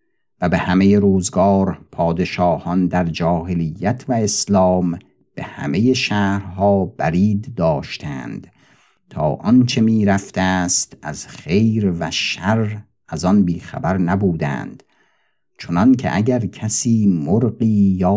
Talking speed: 105 wpm